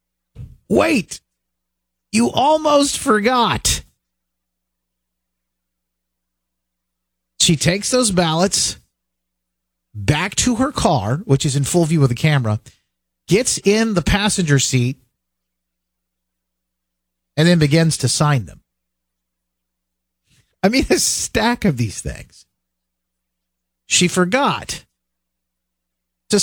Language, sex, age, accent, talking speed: English, male, 50-69, American, 95 wpm